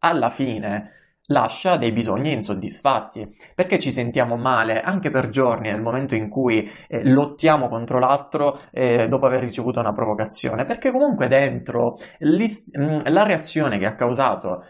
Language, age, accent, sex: Italian, 20-39, native, male